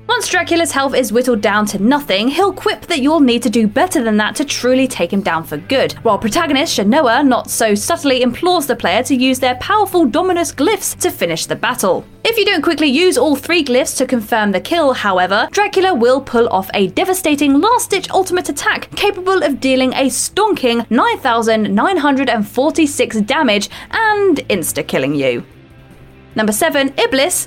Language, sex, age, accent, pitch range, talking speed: English, female, 20-39, British, 225-345 Hz, 170 wpm